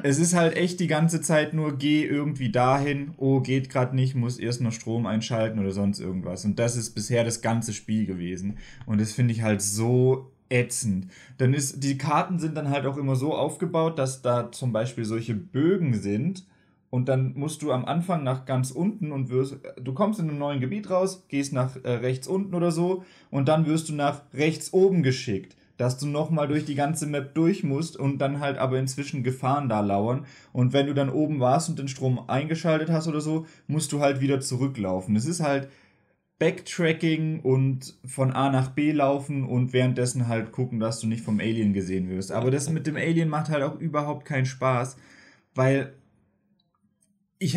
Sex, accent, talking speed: male, German, 200 wpm